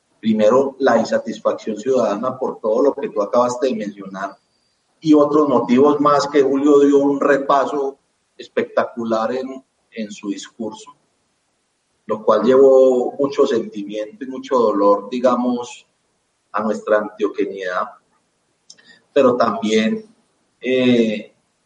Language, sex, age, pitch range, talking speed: Spanish, male, 40-59, 115-145 Hz, 115 wpm